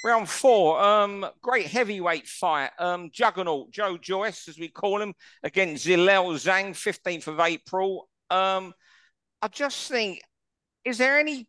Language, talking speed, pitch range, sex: English, 140 wpm, 175-230 Hz, male